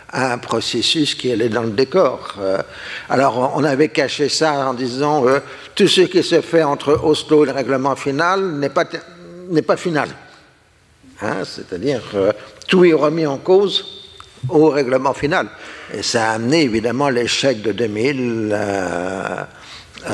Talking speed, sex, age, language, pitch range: 160 wpm, male, 60-79, French, 115-150 Hz